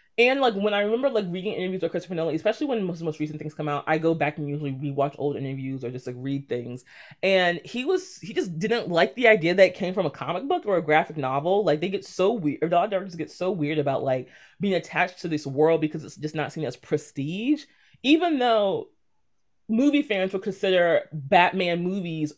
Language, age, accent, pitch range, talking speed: English, 20-39, American, 150-200 Hz, 230 wpm